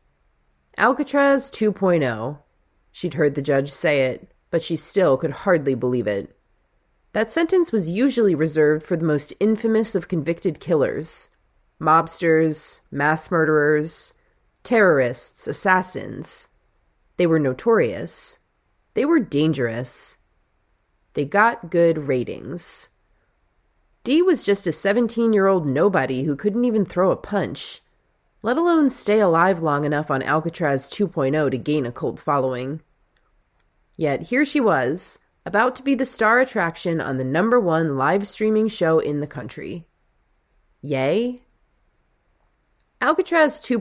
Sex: female